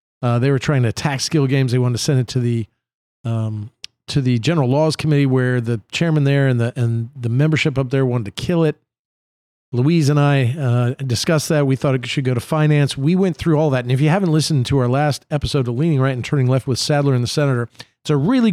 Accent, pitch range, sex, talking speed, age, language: American, 125-155 Hz, male, 250 wpm, 50-69, English